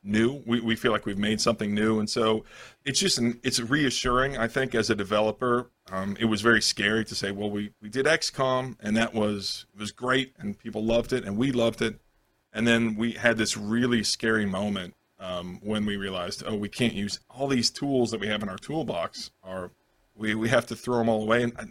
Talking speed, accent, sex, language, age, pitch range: 220 wpm, American, male, English, 40-59, 110-130 Hz